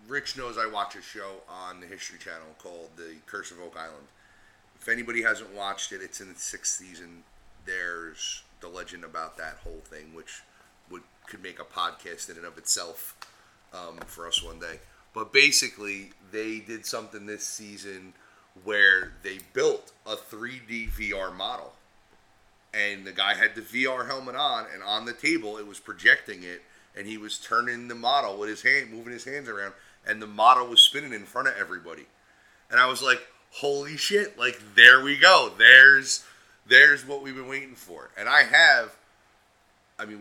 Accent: American